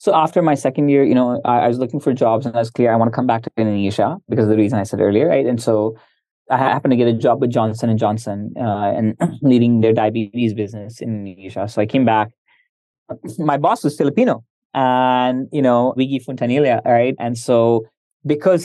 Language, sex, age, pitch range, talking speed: English, male, 20-39, 110-135 Hz, 215 wpm